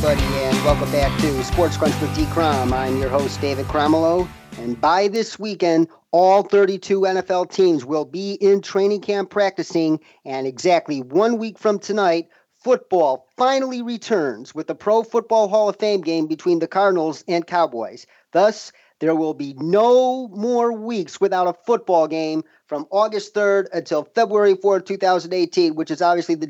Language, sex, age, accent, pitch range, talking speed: English, male, 40-59, American, 170-215 Hz, 165 wpm